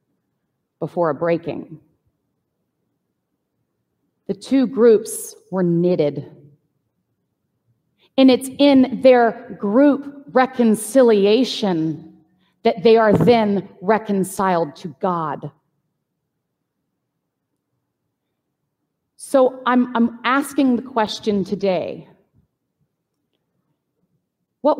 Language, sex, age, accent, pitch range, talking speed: English, female, 30-49, American, 165-240 Hz, 70 wpm